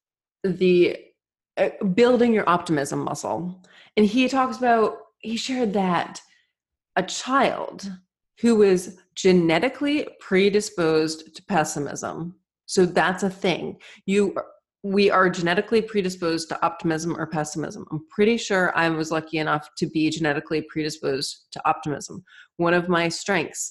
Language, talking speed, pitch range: English, 130 wpm, 165-215 Hz